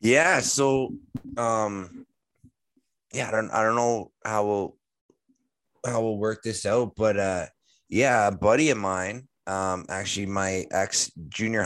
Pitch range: 90-105 Hz